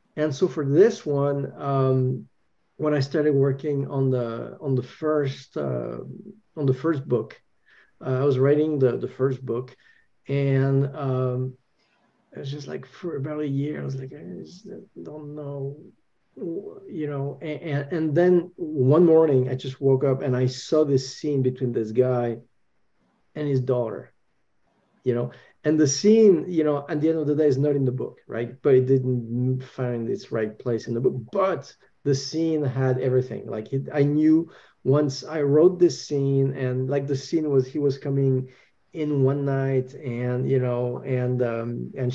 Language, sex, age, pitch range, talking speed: English, male, 50-69, 130-150 Hz, 180 wpm